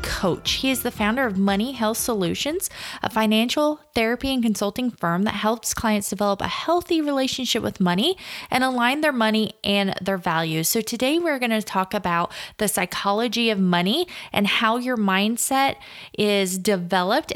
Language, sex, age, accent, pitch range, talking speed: English, female, 20-39, American, 195-255 Hz, 165 wpm